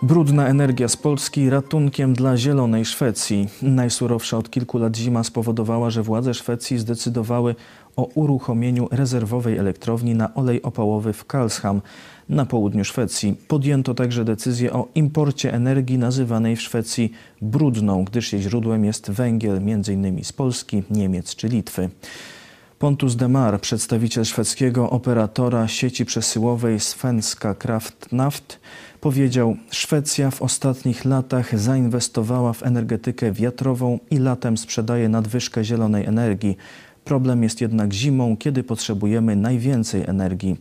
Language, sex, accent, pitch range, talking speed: Polish, male, native, 110-125 Hz, 125 wpm